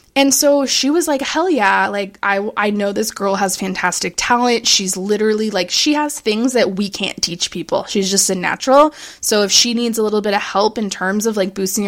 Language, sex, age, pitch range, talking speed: English, female, 20-39, 200-270 Hz, 225 wpm